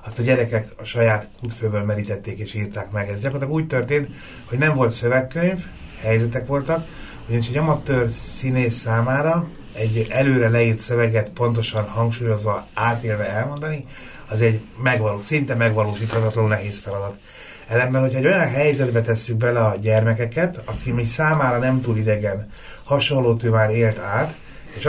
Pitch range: 110-130 Hz